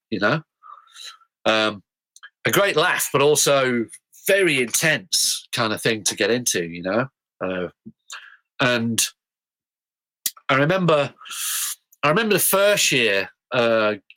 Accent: British